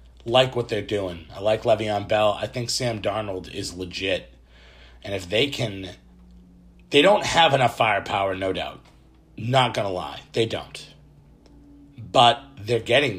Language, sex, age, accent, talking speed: English, male, 40-59, American, 150 wpm